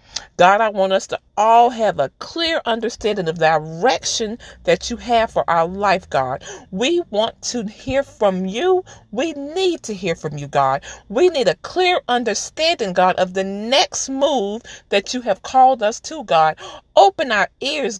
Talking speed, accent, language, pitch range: 175 wpm, American, English, 195-280 Hz